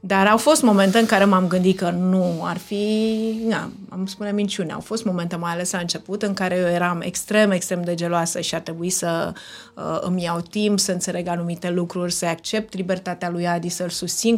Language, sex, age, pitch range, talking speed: Romanian, female, 30-49, 175-215 Hz, 210 wpm